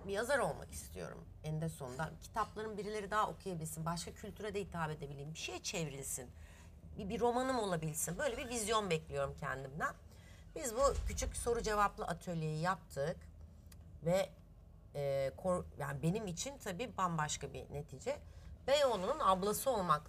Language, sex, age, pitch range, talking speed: Turkish, female, 30-49, 140-220 Hz, 135 wpm